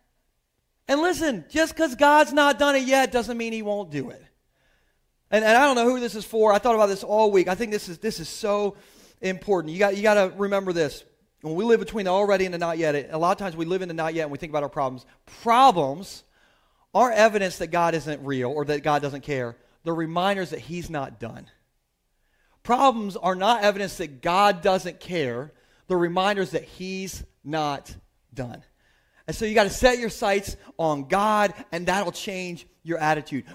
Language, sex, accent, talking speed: English, male, American, 215 wpm